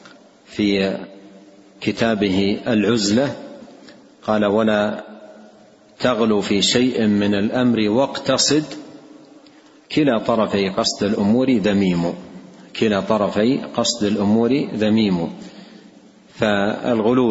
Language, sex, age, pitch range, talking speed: Arabic, male, 40-59, 100-115 Hz, 75 wpm